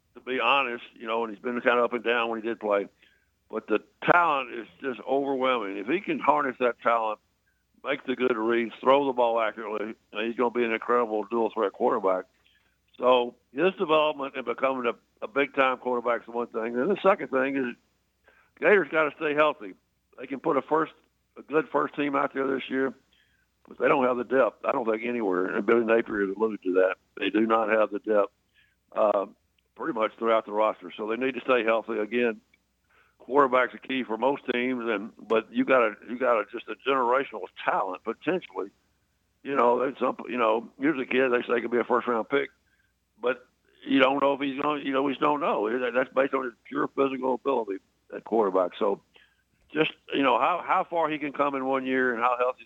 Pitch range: 115-135 Hz